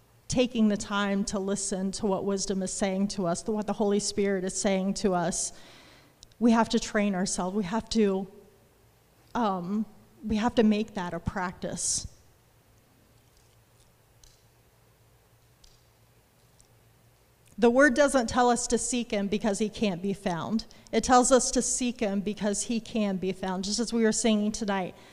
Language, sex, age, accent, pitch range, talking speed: English, female, 30-49, American, 190-230 Hz, 160 wpm